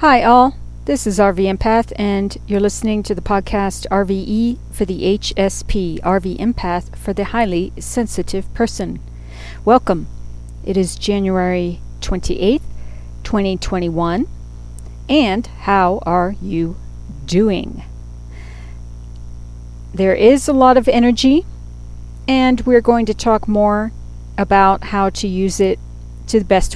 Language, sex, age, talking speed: English, female, 40-59, 120 wpm